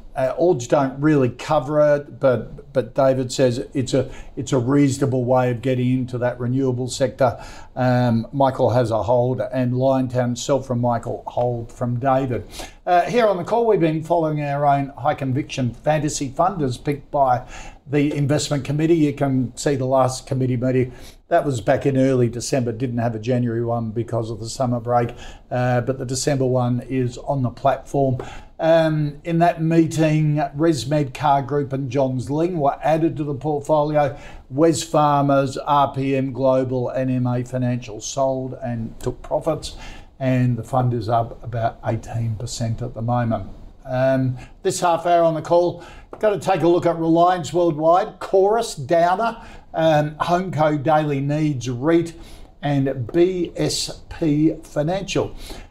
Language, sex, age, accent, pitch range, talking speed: English, male, 50-69, Australian, 125-155 Hz, 155 wpm